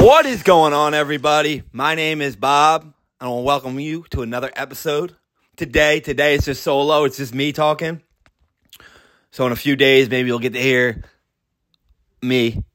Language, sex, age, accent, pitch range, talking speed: English, male, 30-49, American, 125-155 Hz, 180 wpm